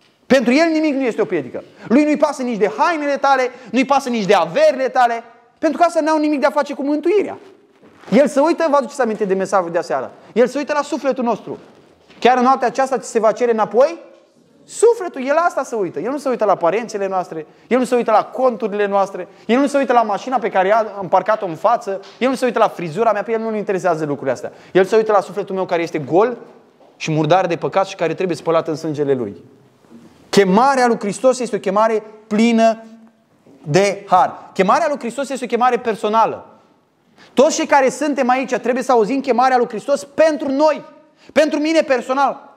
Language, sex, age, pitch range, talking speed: Romanian, male, 20-39, 205-285 Hz, 215 wpm